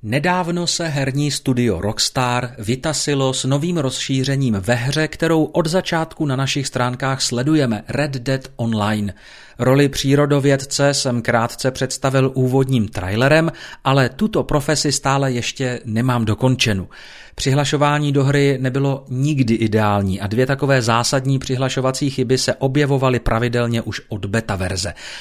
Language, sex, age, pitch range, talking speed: Czech, male, 40-59, 115-140 Hz, 130 wpm